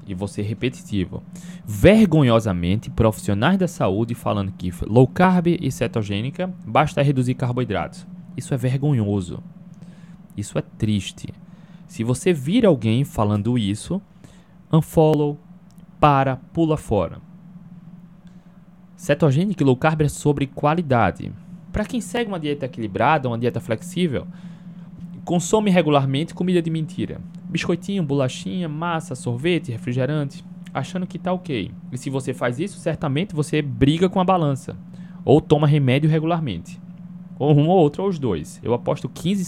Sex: male